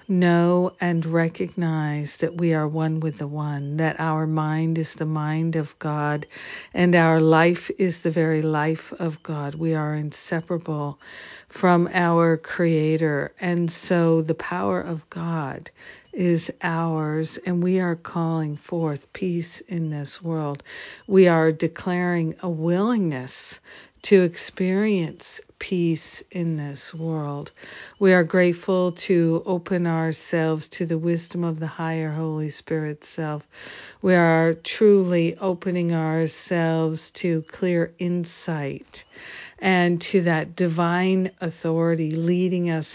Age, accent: 60-79, American